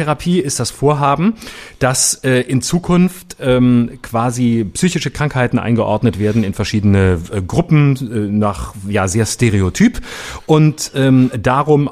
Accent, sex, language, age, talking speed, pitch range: German, male, German, 30-49, 130 wpm, 95-125 Hz